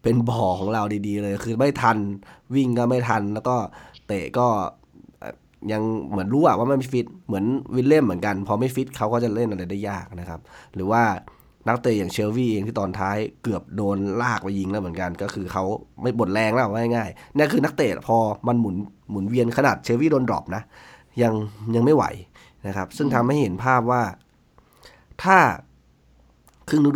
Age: 20-39